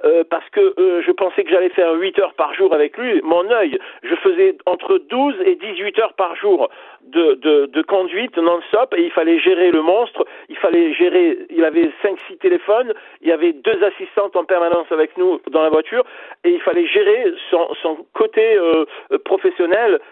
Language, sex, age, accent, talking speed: French, male, 50-69, French, 195 wpm